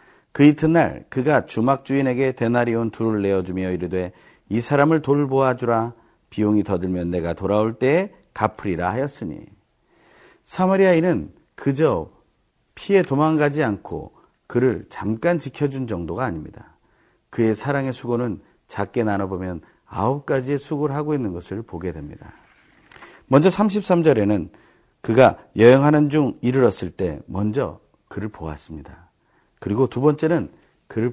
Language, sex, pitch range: Korean, male, 100-150 Hz